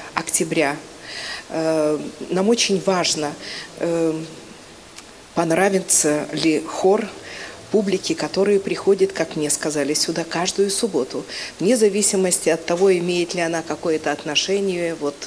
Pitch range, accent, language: 160-205 Hz, native, Russian